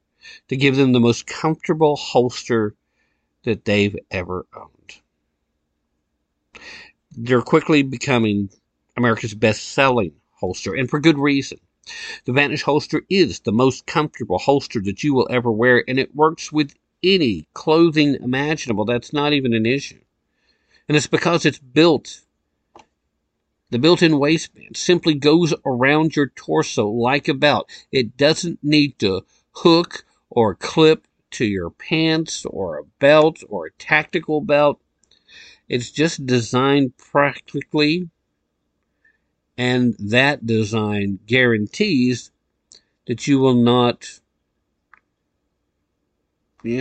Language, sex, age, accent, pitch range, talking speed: English, male, 50-69, American, 110-150 Hz, 120 wpm